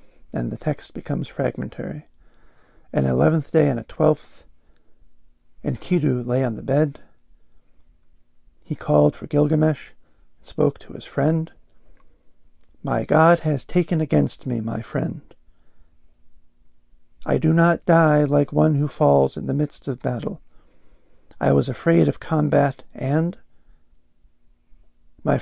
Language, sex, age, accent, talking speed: English, male, 50-69, American, 125 wpm